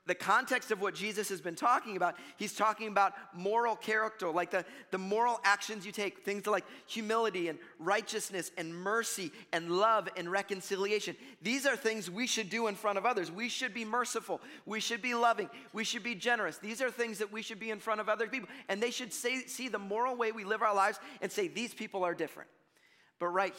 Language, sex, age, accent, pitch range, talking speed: English, male, 30-49, American, 185-230 Hz, 215 wpm